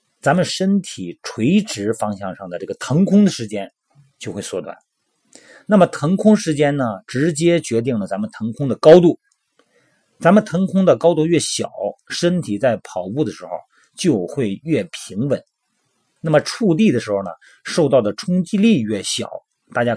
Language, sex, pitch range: Chinese, male, 110-180 Hz